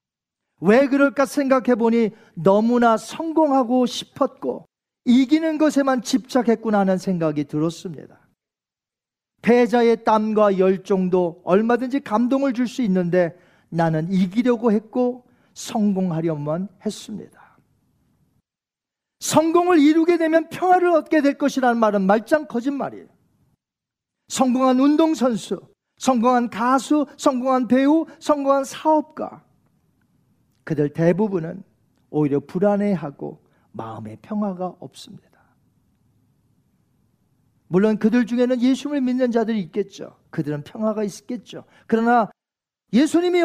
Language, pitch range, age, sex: Korean, 185-270 Hz, 40-59, male